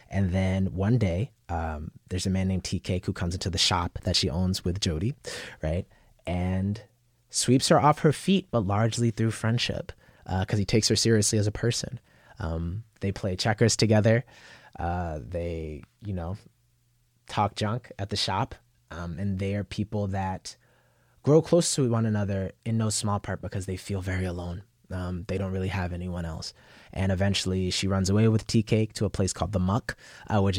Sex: male